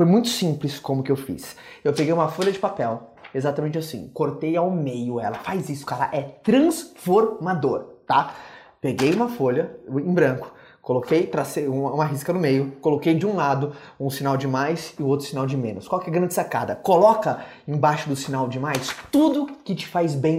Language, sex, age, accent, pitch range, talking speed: Portuguese, male, 20-39, Brazilian, 140-195 Hz, 195 wpm